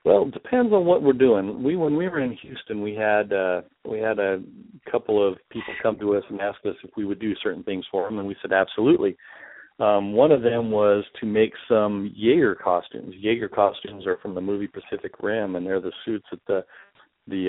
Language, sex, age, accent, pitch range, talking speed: English, male, 50-69, American, 95-110 Hz, 225 wpm